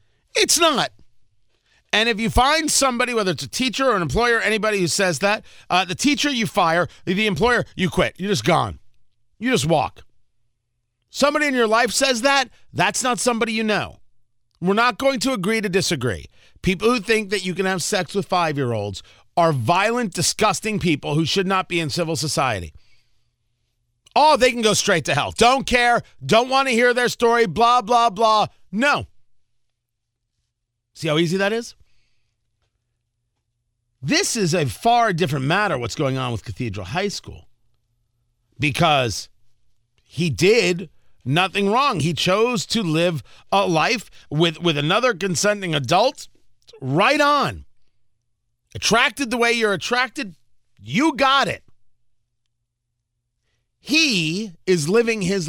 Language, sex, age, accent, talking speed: English, male, 40-59, American, 150 wpm